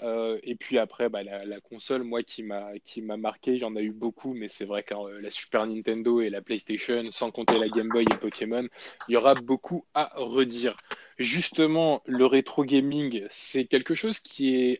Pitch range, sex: 115-140 Hz, male